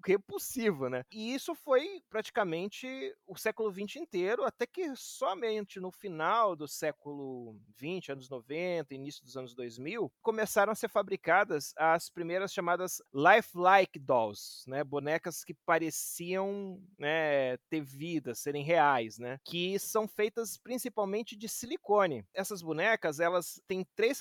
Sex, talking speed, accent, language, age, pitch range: male, 135 wpm, Brazilian, Portuguese, 30-49, 150-205 Hz